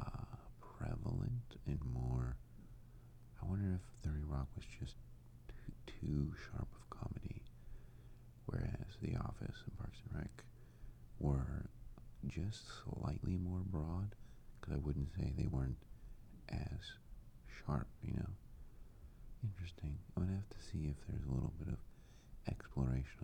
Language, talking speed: English, 130 wpm